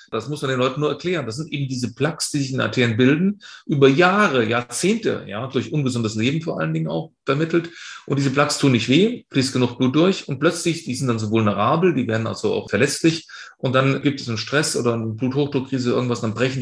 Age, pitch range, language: 40-59, 125-160 Hz, German